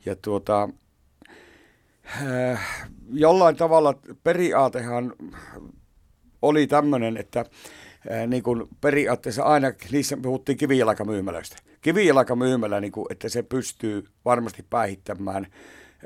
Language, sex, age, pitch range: Finnish, male, 60-79, 105-130 Hz